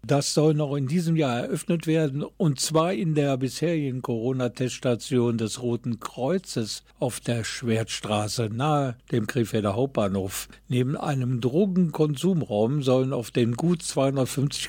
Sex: male